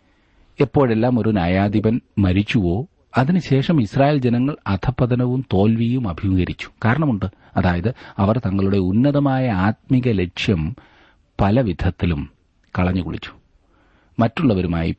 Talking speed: 90 wpm